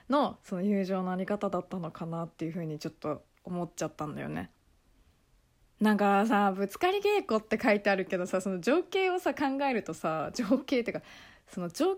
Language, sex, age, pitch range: Japanese, female, 20-39, 185-265 Hz